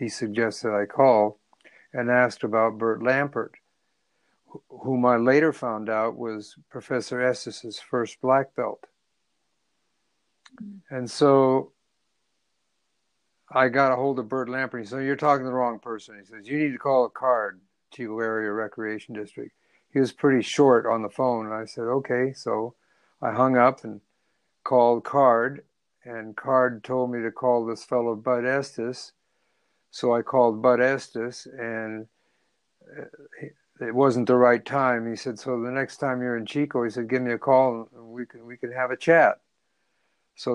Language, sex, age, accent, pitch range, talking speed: English, male, 60-79, American, 115-130 Hz, 170 wpm